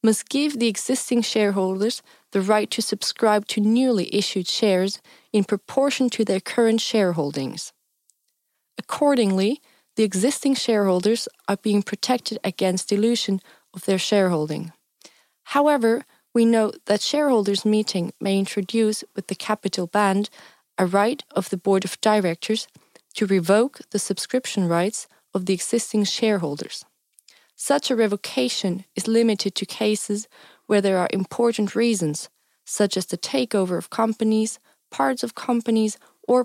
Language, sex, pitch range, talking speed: English, female, 190-225 Hz, 135 wpm